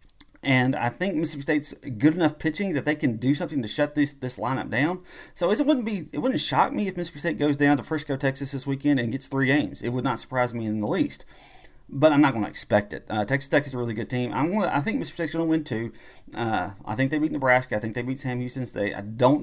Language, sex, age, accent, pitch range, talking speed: English, male, 30-49, American, 100-135 Hz, 275 wpm